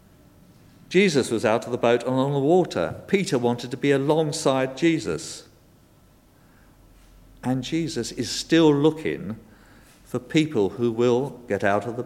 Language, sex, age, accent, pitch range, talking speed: English, male, 50-69, British, 105-135 Hz, 145 wpm